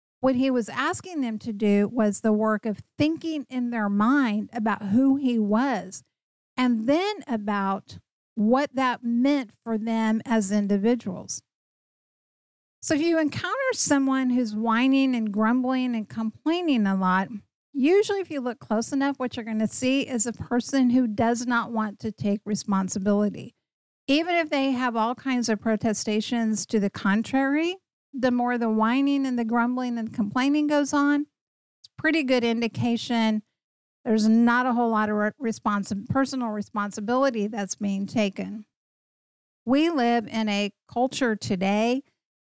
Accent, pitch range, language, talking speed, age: American, 215-265 Hz, English, 150 wpm, 50-69